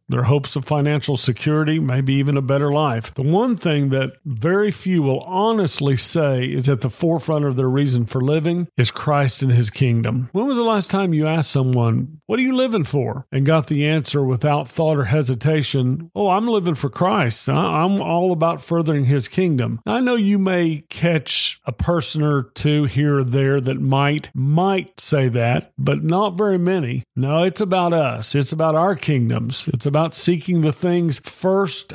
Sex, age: male, 50-69